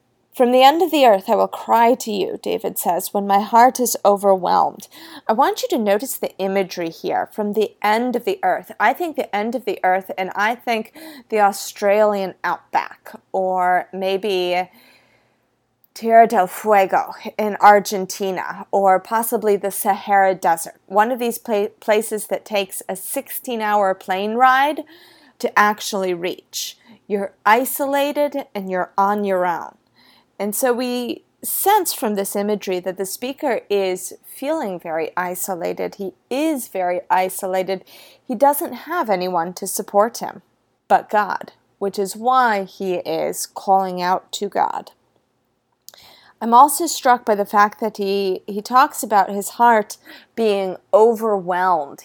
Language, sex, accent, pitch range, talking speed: English, female, American, 190-240 Hz, 150 wpm